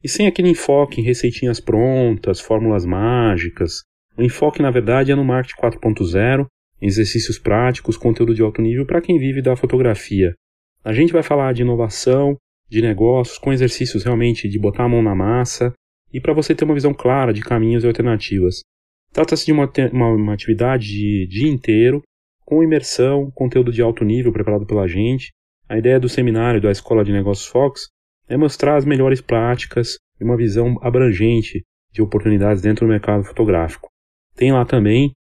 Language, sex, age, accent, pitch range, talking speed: Portuguese, male, 30-49, Brazilian, 105-130 Hz, 175 wpm